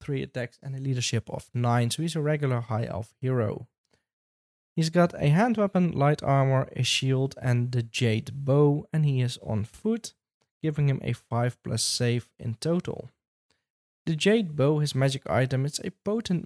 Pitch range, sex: 120-155 Hz, male